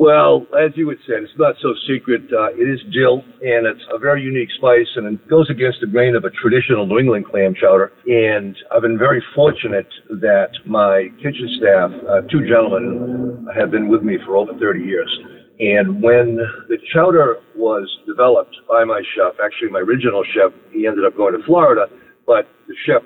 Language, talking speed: English, 195 wpm